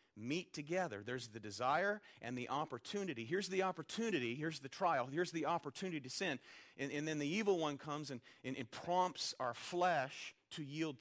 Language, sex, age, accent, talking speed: English, male, 40-59, American, 185 wpm